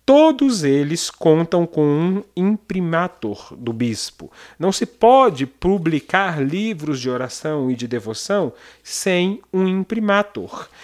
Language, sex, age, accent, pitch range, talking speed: Portuguese, male, 40-59, Brazilian, 130-185 Hz, 115 wpm